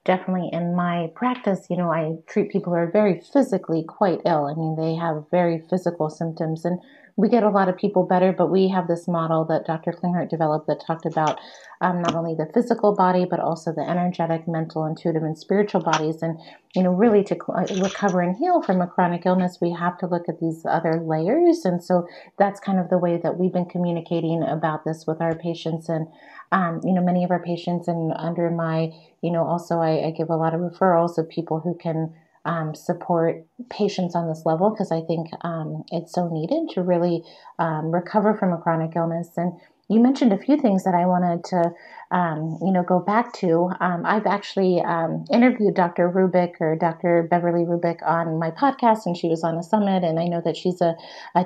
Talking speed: 210 wpm